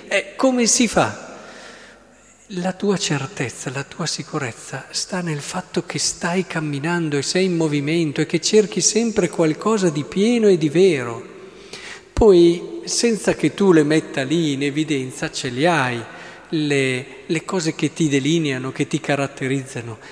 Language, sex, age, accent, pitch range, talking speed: Italian, male, 40-59, native, 135-180 Hz, 150 wpm